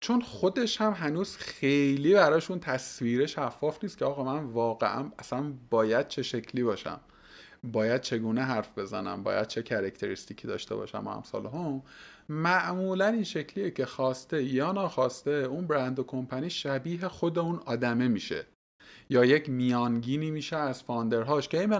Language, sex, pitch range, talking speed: Persian, male, 125-160 Hz, 150 wpm